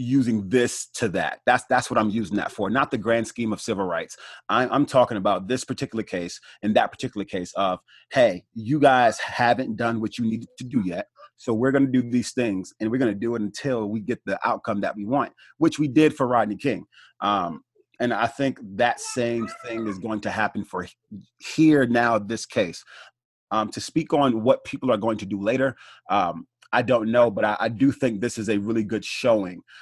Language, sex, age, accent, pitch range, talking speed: English, male, 30-49, American, 105-130 Hz, 220 wpm